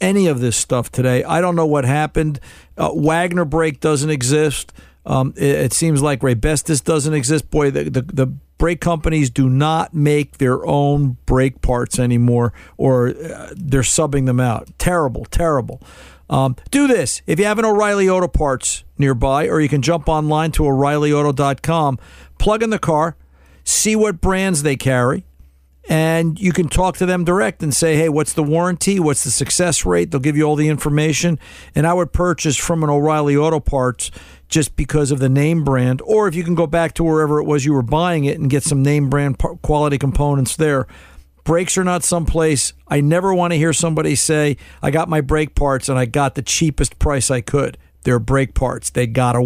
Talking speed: 195 wpm